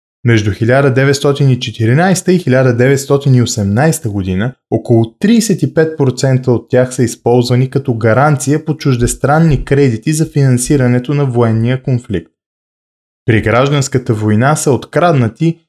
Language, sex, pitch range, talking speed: Bulgarian, male, 110-150 Hz, 100 wpm